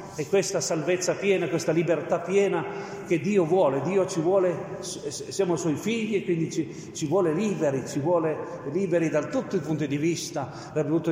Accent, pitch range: native, 160-205 Hz